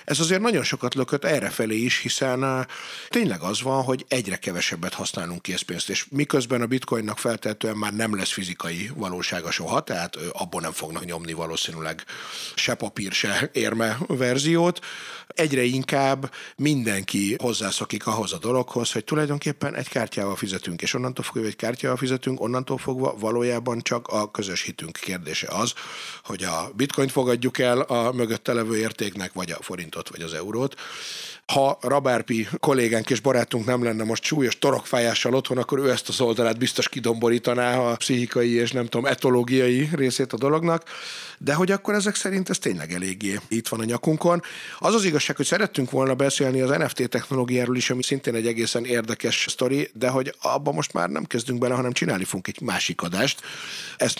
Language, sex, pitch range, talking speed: Hungarian, male, 110-135 Hz, 170 wpm